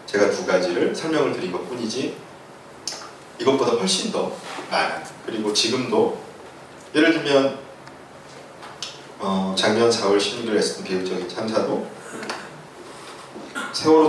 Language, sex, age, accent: Korean, male, 30-49, native